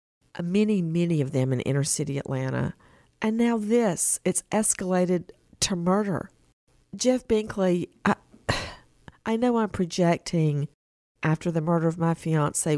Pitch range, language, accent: 170-230 Hz, English, American